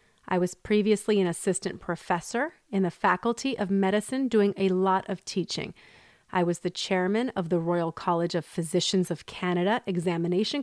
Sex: female